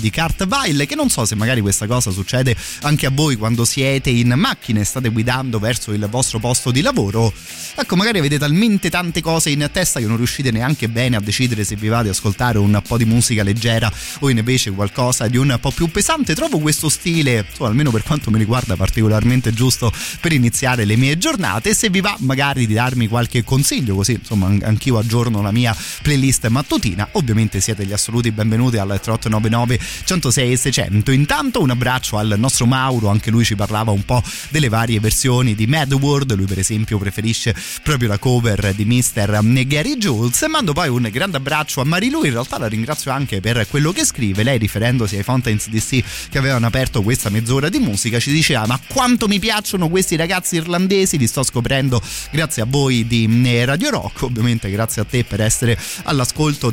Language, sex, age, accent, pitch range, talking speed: Italian, male, 30-49, native, 110-145 Hz, 195 wpm